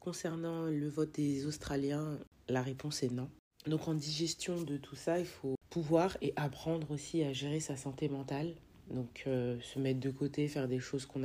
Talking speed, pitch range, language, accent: 190 wpm, 135-160 Hz, French, French